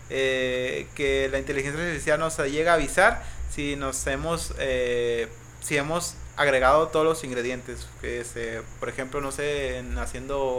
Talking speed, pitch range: 155 wpm, 125-160 Hz